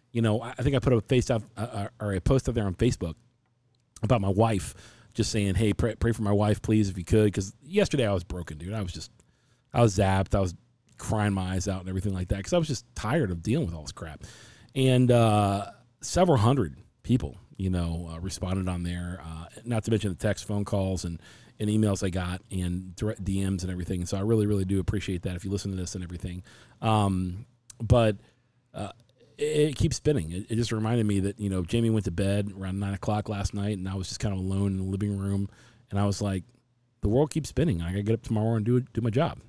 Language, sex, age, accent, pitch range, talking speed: English, male, 40-59, American, 95-120 Hz, 245 wpm